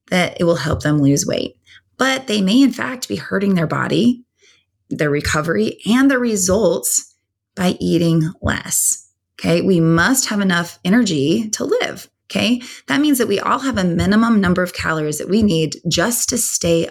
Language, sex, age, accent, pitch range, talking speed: English, female, 20-39, American, 170-245 Hz, 175 wpm